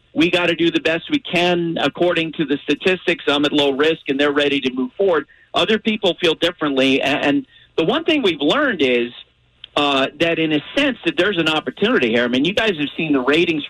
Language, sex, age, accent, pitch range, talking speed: English, male, 50-69, American, 145-205 Hz, 225 wpm